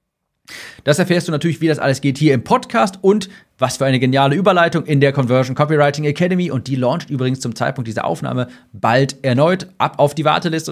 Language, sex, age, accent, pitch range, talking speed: German, male, 40-59, German, 120-155 Hz, 200 wpm